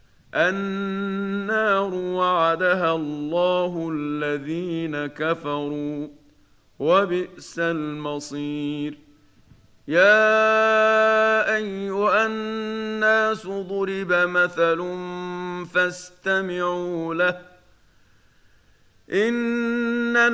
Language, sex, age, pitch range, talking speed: Arabic, male, 40-59, 180-220 Hz, 45 wpm